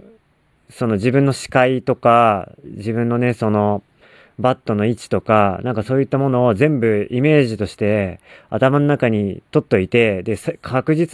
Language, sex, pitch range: Japanese, male, 105-150 Hz